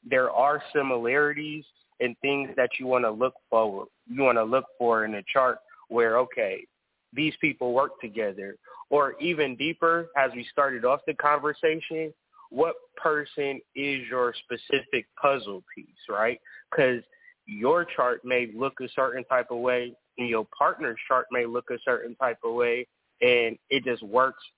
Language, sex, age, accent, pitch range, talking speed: English, male, 20-39, American, 125-165 Hz, 165 wpm